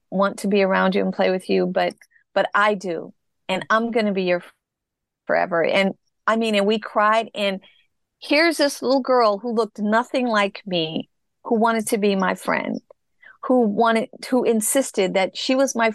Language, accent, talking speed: English, American, 190 wpm